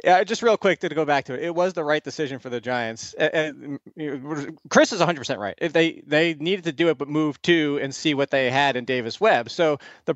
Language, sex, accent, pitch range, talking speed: English, male, American, 155-195 Hz, 250 wpm